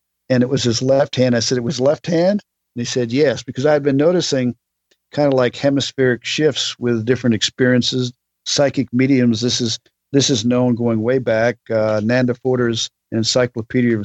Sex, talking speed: male, 190 wpm